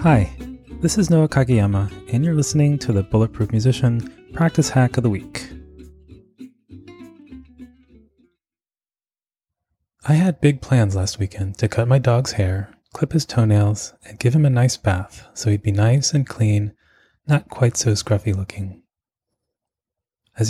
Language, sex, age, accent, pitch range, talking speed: English, male, 20-39, American, 100-130 Hz, 145 wpm